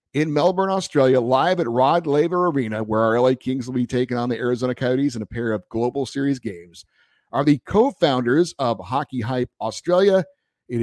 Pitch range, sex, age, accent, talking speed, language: 120-155 Hz, male, 50-69, American, 190 wpm, English